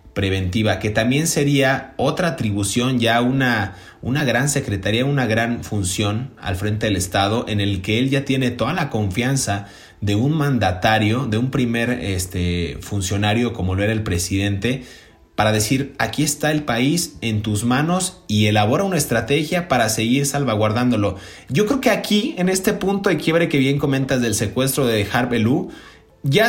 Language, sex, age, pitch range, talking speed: Spanish, male, 30-49, 110-150 Hz, 165 wpm